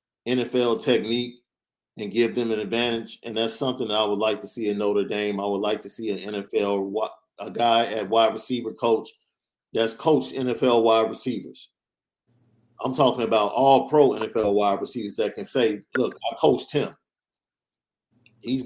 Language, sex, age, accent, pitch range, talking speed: English, male, 40-59, American, 105-120 Hz, 175 wpm